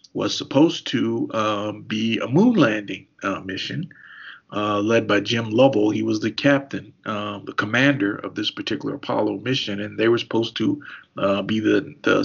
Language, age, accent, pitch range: English, 50-69, American, 105-135 Hz